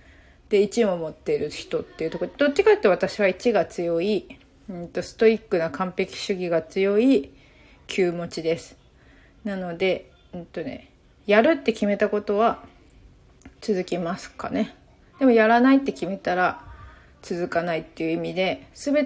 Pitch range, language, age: 180-235 Hz, Japanese, 30-49